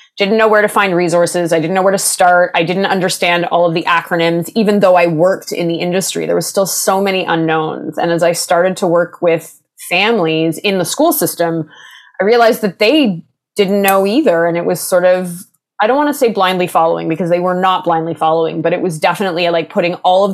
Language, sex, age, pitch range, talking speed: English, female, 20-39, 165-195 Hz, 220 wpm